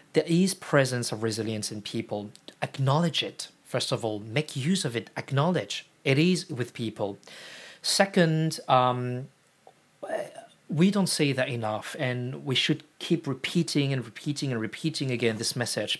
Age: 40-59